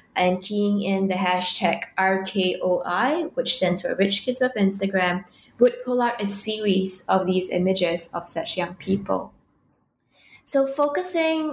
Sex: female